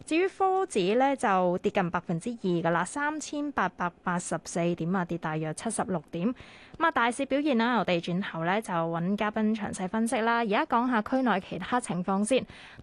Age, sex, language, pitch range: 20-39, female, Chinese, 185-250 Hz